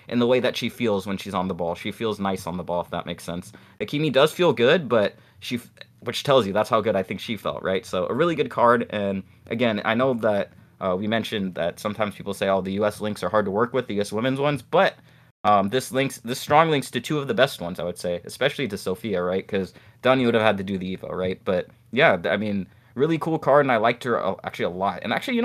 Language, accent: English, American